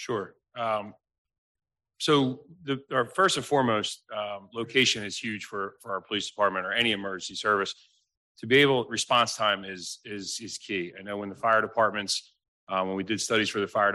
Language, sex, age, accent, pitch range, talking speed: English, male, 30-49, American, 95-115 Hz, 190 wpm